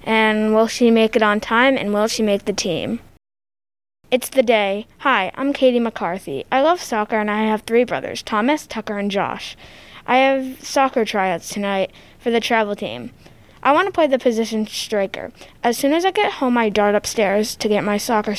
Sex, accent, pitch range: female, American, 210-265 Hz